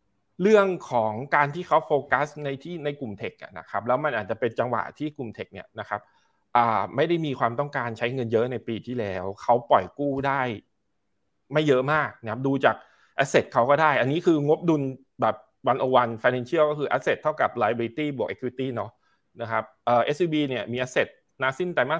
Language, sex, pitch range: Thai, male, 115-150 Hz